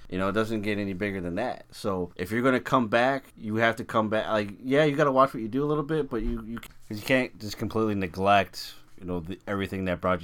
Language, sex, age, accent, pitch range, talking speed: English, male, 30-49, American, 90-110 Hz, 270 wpm